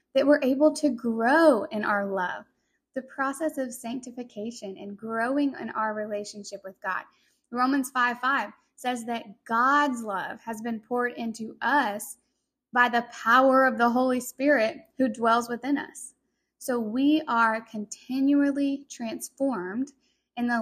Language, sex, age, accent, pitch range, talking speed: English, female, 10-29, American, 225-280 Hz, 145 wpm